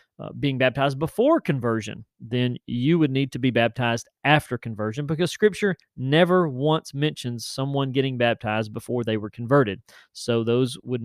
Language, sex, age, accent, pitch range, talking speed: English, male, 30-49, American, 125-165 Hz, 160 wpm